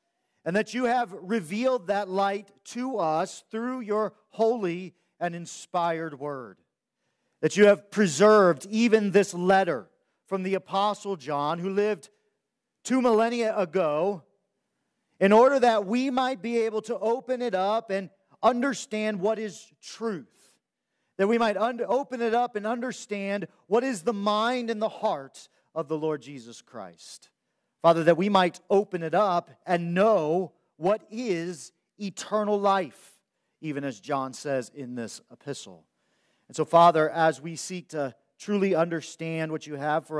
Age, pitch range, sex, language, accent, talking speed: 40-59, 155-215 Hz, male, English, American, 150 wpm